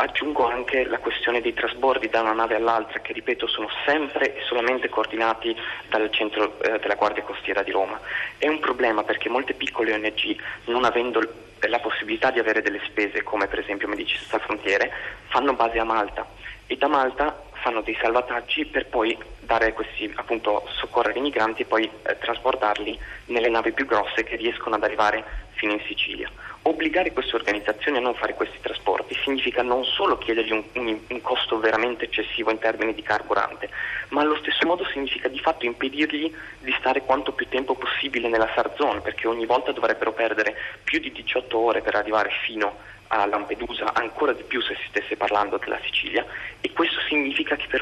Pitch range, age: 110-130 Hz, 20-39